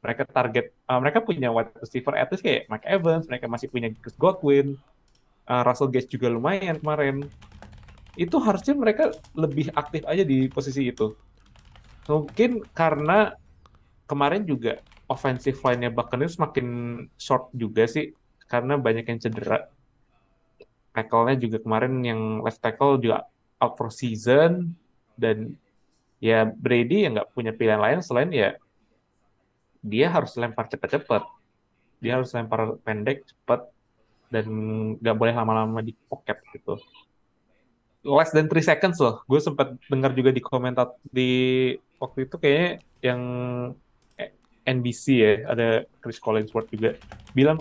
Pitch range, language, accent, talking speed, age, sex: 115-150 Hz, Indonesian, native, 130 wpm, 20-39, male